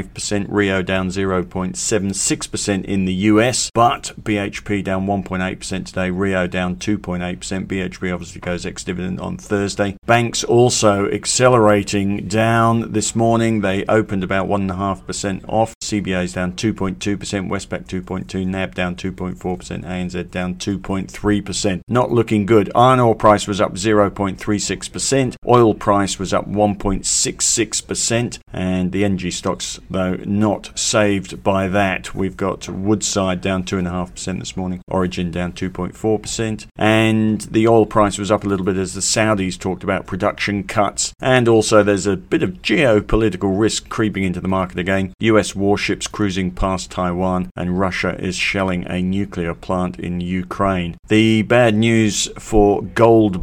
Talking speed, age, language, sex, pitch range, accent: 140 wpm, 50-69, English, male, 95-105 Hz, British